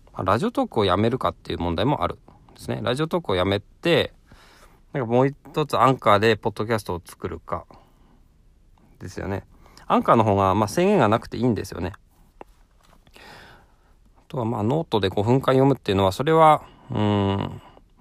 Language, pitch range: Japanese, 95-135 Hz